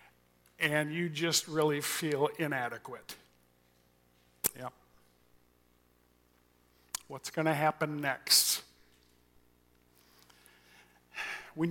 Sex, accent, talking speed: male, American, 65 wpm